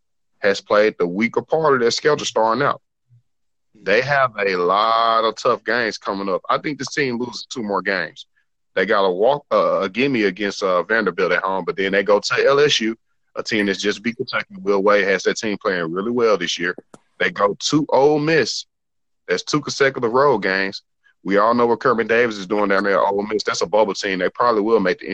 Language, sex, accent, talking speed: English, male, American, 220 wpm